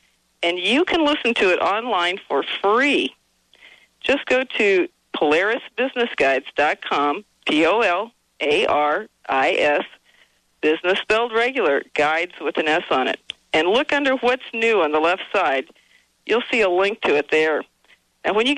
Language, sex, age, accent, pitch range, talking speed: English, female, 50-69, American, 185-250 Hz, 135 wpm